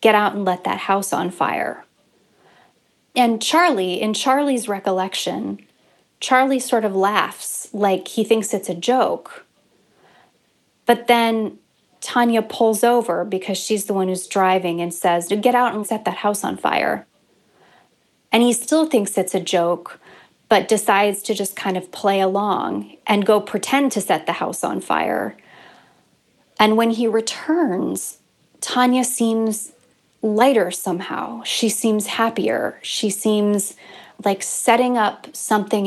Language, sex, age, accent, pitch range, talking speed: English, female, 20-39, American, 190-225 Hz, 140 wpm